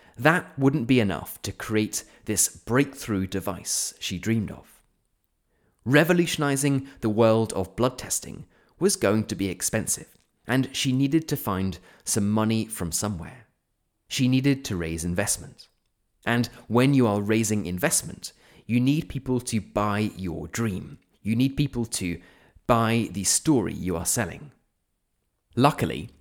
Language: English